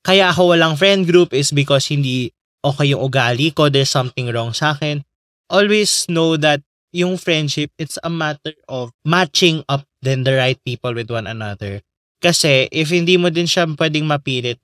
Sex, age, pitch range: male, 20-39, 125-170 Hz